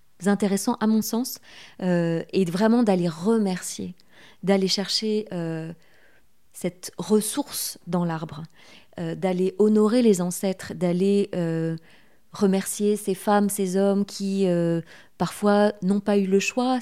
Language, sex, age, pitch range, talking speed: French, female, 30-49, 175-205 Hz, 130 wpm